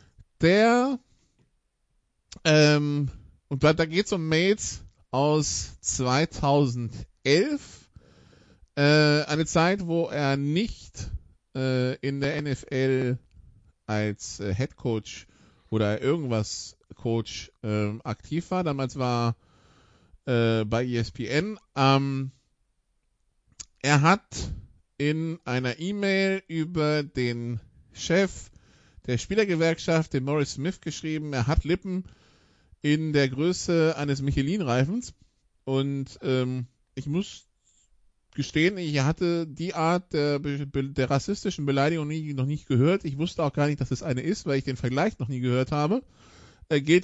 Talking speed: 120 wpm